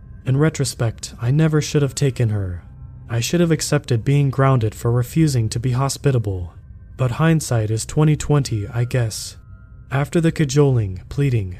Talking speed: 150 wpm